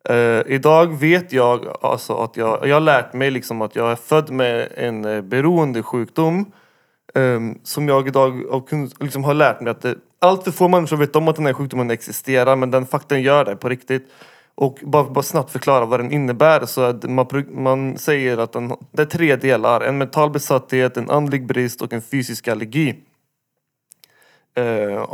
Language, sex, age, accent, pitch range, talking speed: Swedish, male, 30-49, native, 125-145 Hz, 190 wpm